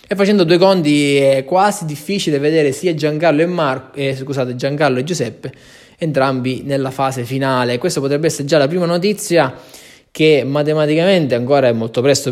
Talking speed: 145 wpm